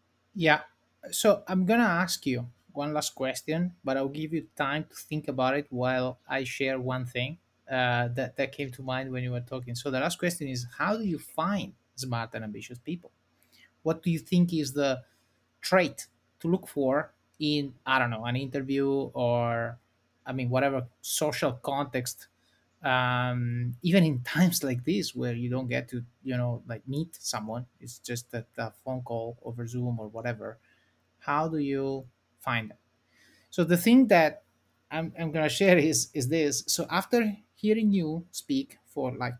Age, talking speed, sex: 20-39, 180 wpm, male